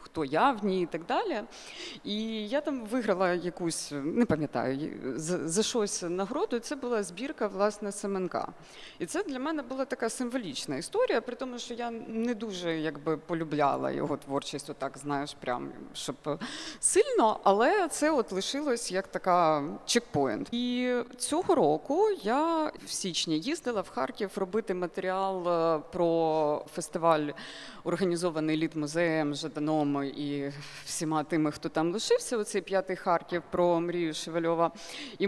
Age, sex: 30-49, female